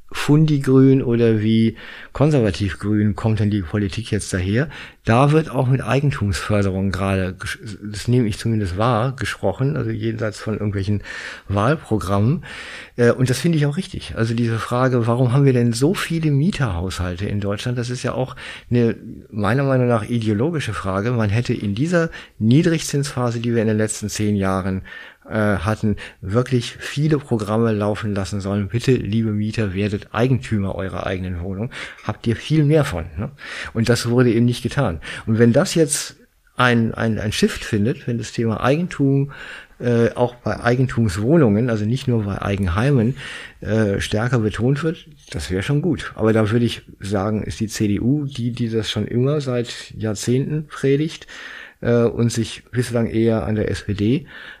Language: German